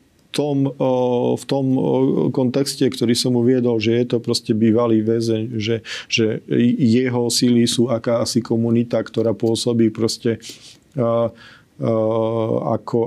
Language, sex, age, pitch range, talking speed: Slovak, male, 40-59, 115-130 Hz, 105 wpm